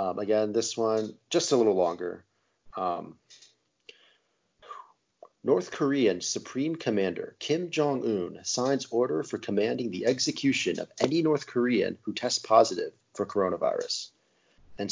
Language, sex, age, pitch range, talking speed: English, male, 30-49, 100-140 Hz, 125 wpm